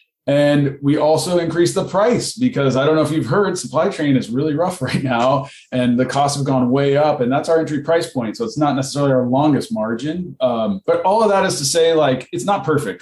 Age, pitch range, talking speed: 20-39, 125-155 Hz, 240 wpm